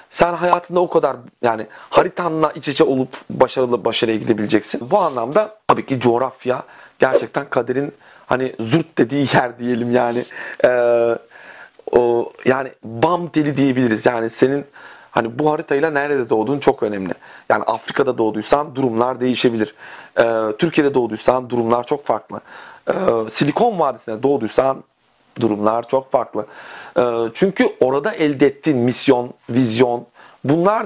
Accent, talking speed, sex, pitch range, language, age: native, 125 wpm, male, 115-150 Hz, Turkish, 40-59